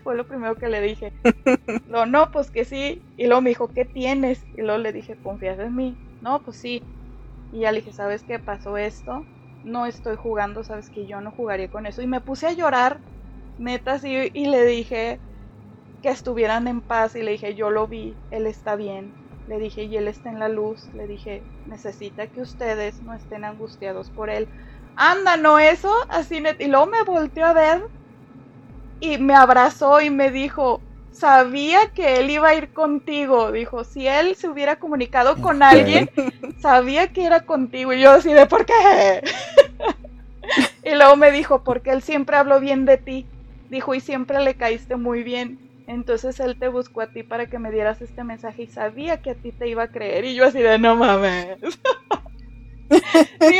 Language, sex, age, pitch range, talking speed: Spanish, female, 20-39, 225-285 Hz, 195 wpm